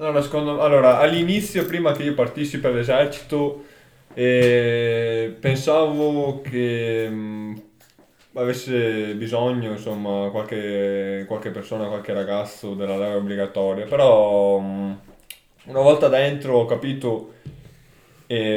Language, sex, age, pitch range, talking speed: Italian, male, 20-39, 100-125 Hz, 105 wpm